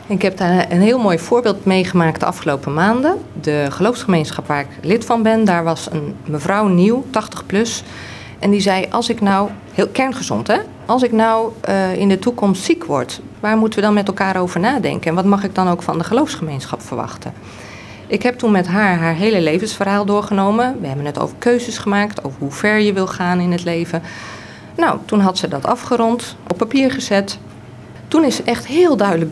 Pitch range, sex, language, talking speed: 160-220 Hz, female, Dutch, 205 wpm